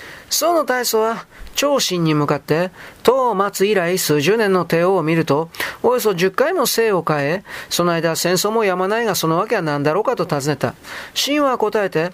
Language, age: Japanese, 40-59